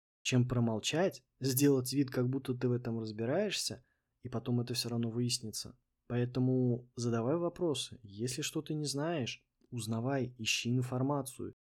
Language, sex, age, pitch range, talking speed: Russian, male, 20-39, 120-140 Hz, 135 wpm